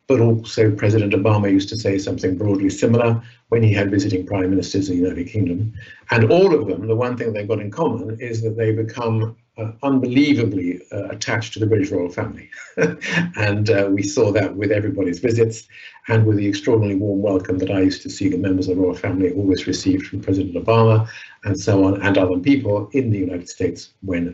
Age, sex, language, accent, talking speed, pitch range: 50-69, male, English, British, 210 wpm, 100-120 Hz